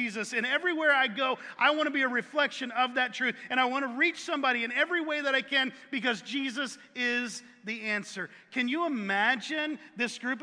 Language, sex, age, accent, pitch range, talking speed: English, male, 40-59, American, 195-270 Hz, 205 wpm